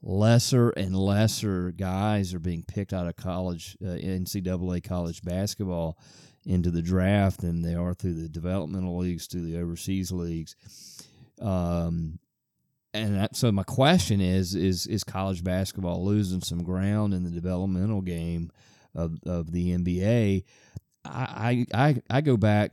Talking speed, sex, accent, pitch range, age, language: 145 wpm, male, American, 85-100 Hz, 30-49, English